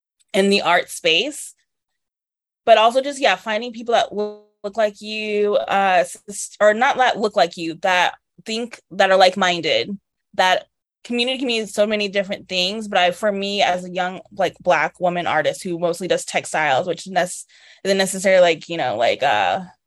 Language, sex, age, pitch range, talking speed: English, female, 20-39, 180-225 Hz, 180 wpm